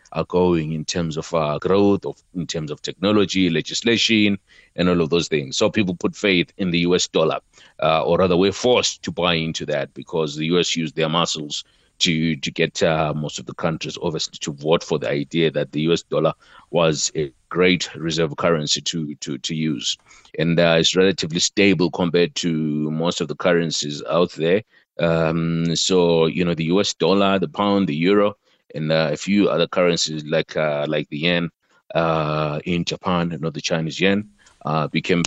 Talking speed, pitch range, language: 190 wpm, 80-90 Hz, English